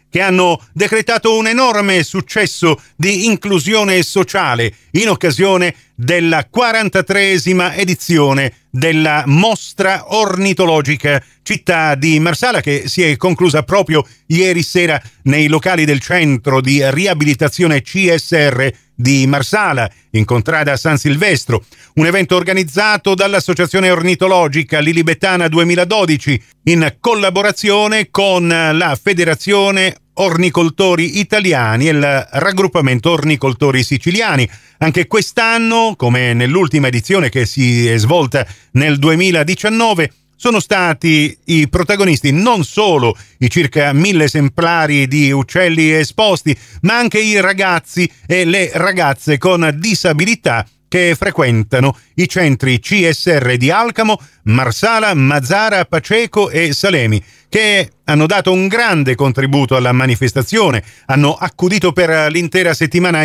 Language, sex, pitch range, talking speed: Italian, male, 140-190 Hz, 110 wpm